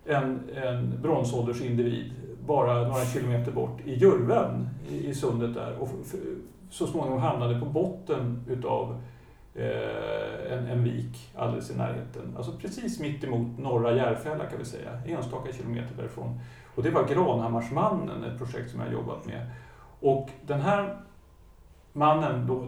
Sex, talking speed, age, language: male, 150 wpm, 40-59, Swedish